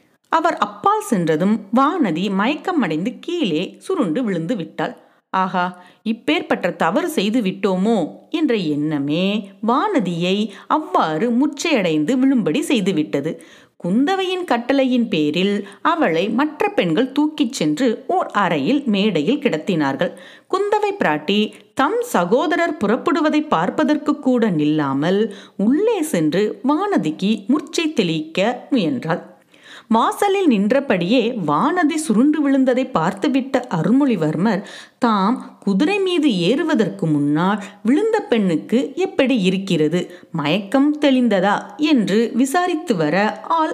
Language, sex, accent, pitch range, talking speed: Tamil, female, native, 190-295 Hz, 95 wpm